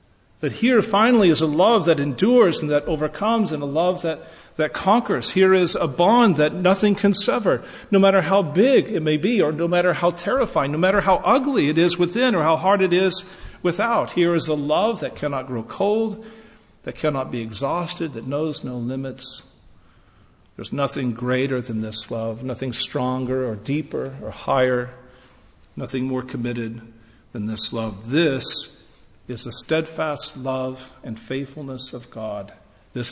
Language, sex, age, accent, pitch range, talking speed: English, male, 50-69, American, 115-175 Hz, 170 wpm